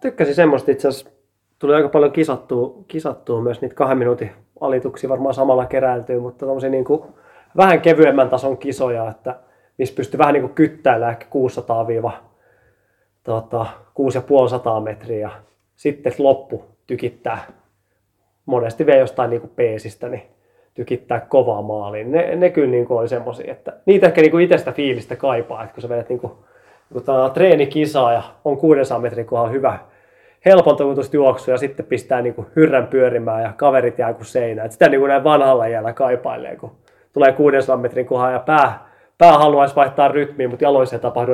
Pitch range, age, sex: 115-145 Hz, 20-39, male